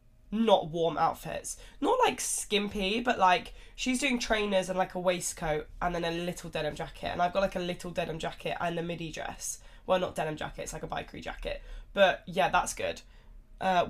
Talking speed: 205 wpm